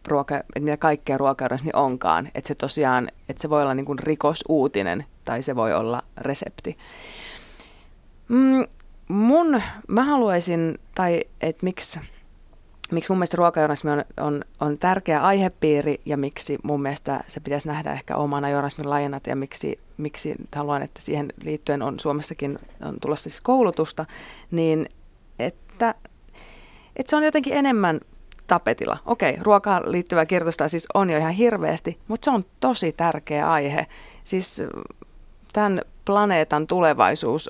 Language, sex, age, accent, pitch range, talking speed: Finnish, female, 30-49, native, 145-185 Hz, 135 wpm